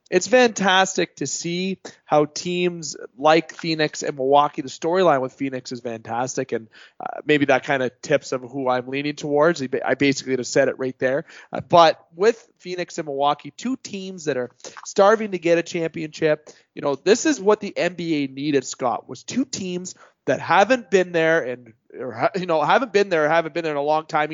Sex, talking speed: male, 195 wpm